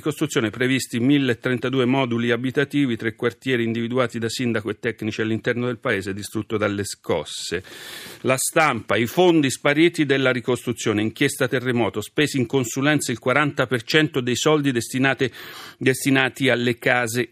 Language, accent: Italian, native